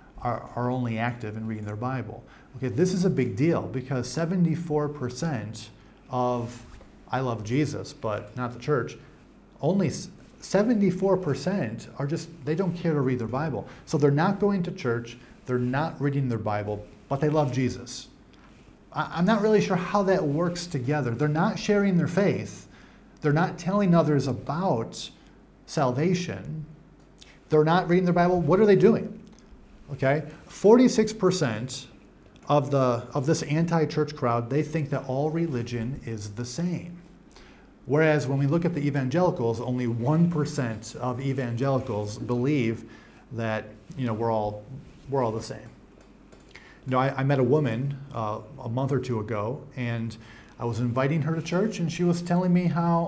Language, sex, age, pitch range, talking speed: English, male, 40-59, 125-175 Hz, 160 wpm